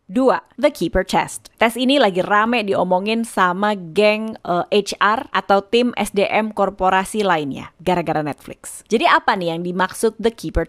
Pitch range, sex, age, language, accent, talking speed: 195-270 Hz, female, 20-39, Indonesian, native, 150 wpm